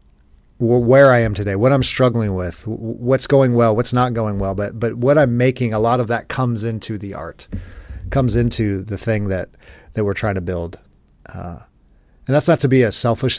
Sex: male